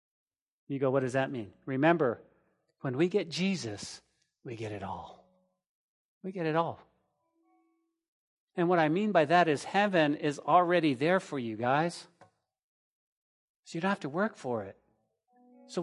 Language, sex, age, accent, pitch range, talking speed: English, male, 40-59, American, 135-210 Hz, 160 wpm